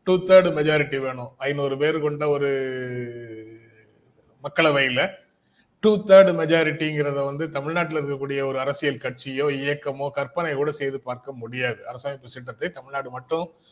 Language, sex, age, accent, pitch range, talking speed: Tamil, male, 30-49, native, 130-160 Hz, 120 wpm